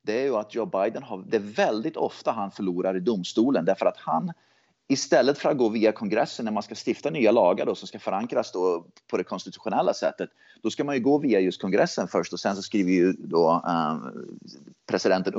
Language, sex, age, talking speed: Swedish, male, 30-49, 220 wpm